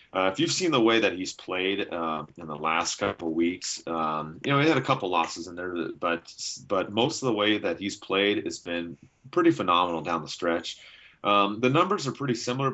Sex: male